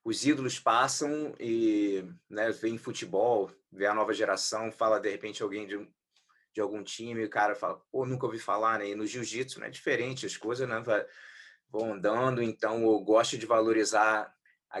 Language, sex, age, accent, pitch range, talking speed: English, male, 20-39, Brazilian, 110-135 Hz, 180 wpm